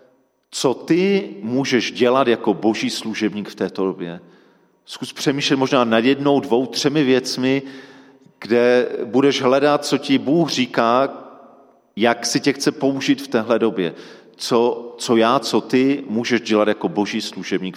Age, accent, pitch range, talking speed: 40-59, native, 115-135 Hz, 145 wpm